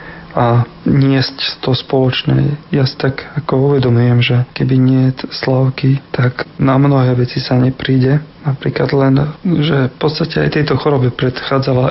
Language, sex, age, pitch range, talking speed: Slovak, male, 40-59, 125-145 Hz, 145 wpm